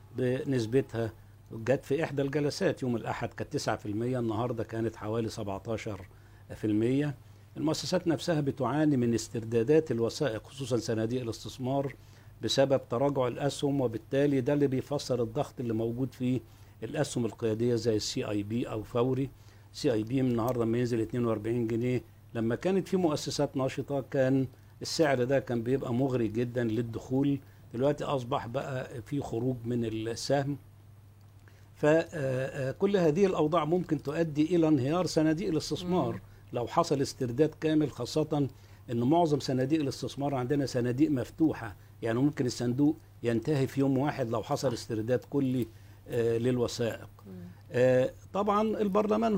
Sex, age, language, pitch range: male, 60-79, Arabic, 115-145 Hz